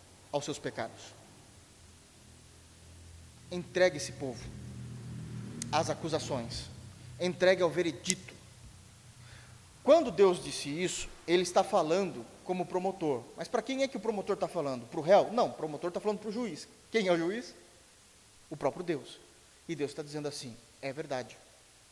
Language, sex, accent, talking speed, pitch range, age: Portuguese, male, Brazilian, 150 wpm, 130-200 Hz, 30-49